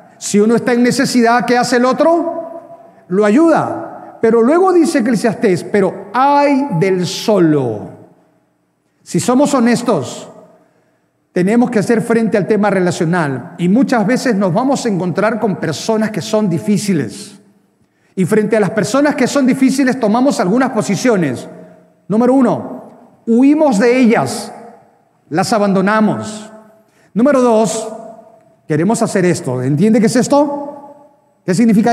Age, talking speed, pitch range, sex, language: 40-59, 130 wpm, 190-245 Hz, male, Spanish